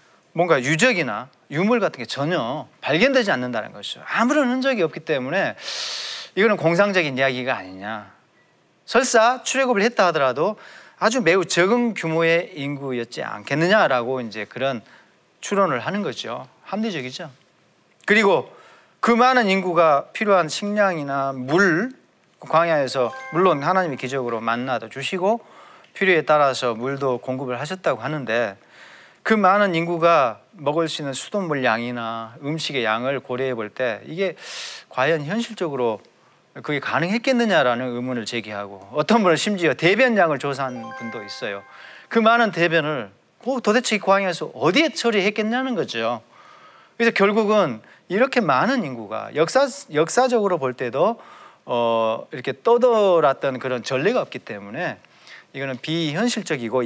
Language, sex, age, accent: Korean, male, 30-49, native